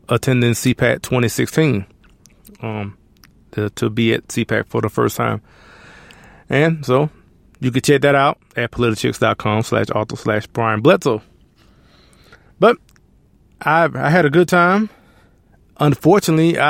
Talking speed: 120 wpm